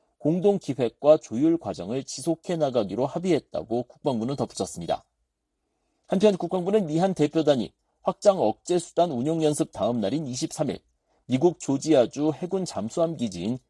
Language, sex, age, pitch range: Korean, male, 40-59, 135-185 Hz